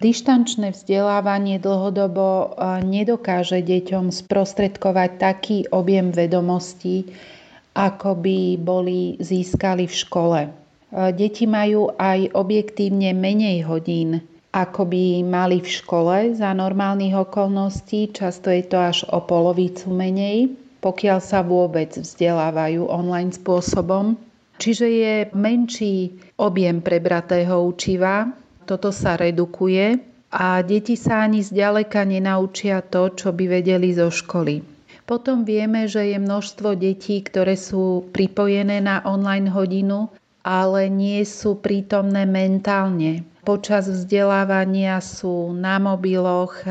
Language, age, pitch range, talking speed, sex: Slovak, 40-59, 180-200 Hz, 110 wpm, female